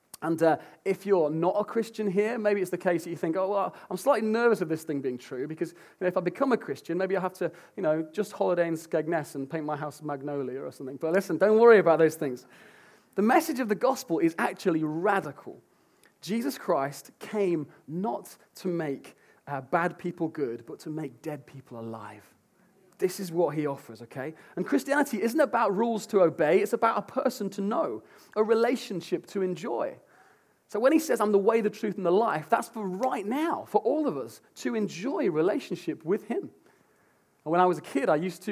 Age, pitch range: 30-49, 155-210 Hz